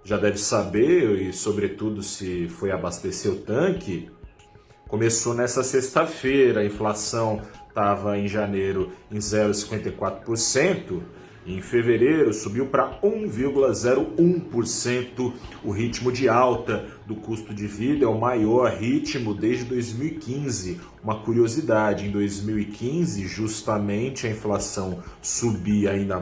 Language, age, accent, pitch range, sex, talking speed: Portuguese, 30-49, Brazilian, 105-125 Hz, male, 110 wpm